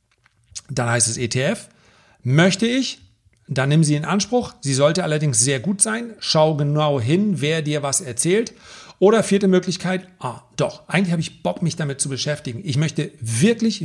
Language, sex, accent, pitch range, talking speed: German, male, German, 135-185 Hz, 175 wpm